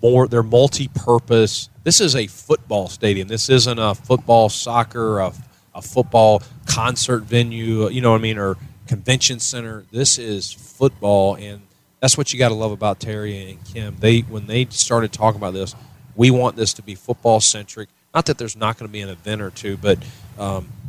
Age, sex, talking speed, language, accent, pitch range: 40-59, male, 190 wpm, English, American, 100-120 Hz